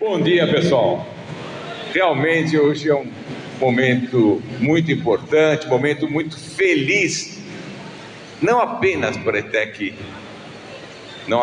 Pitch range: 150-215 Hz